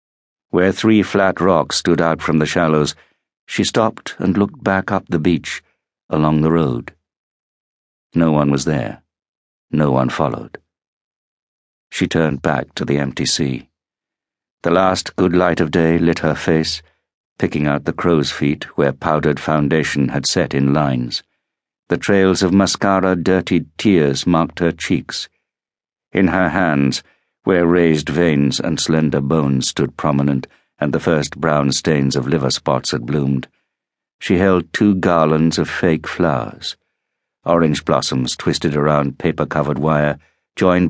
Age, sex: 60-79, male